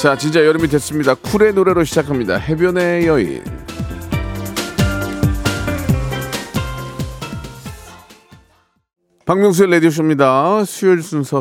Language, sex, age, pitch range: Korean, male, 40-59, 105-140 Hz